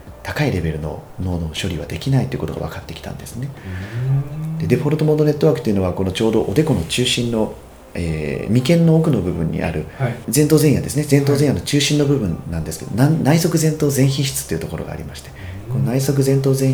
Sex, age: male, 40-59